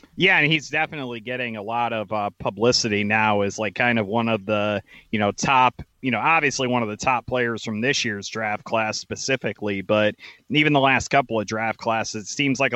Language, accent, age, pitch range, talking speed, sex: English, American, 30-49, 115-135 Hz, 215 wpm, male